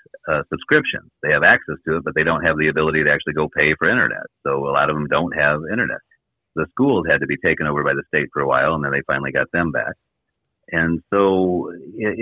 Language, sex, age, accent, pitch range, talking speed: English, male, 40-59, American, 70-90 Hz, 245 wpm